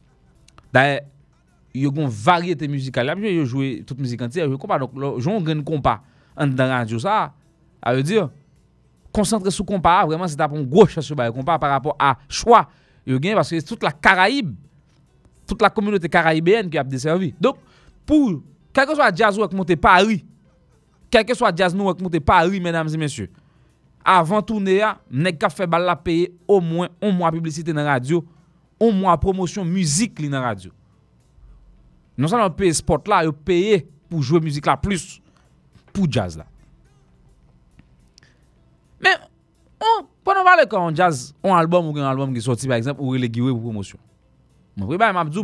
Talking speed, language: 190 wpm, English